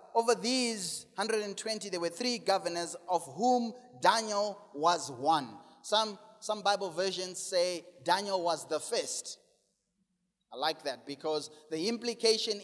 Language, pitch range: English, 180-240 Hz